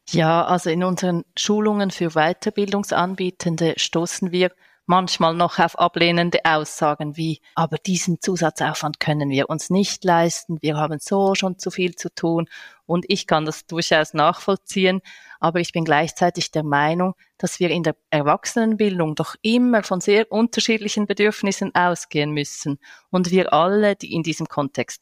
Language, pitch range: German, 155-185 Hz